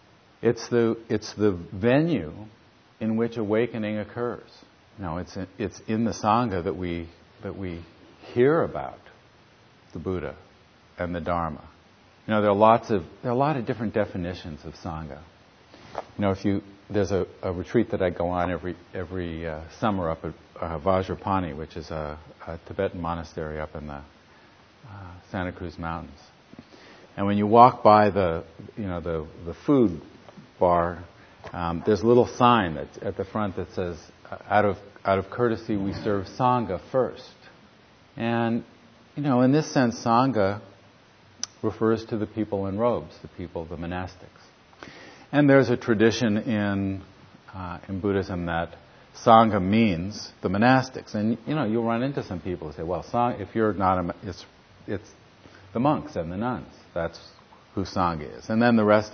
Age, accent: 50-69, American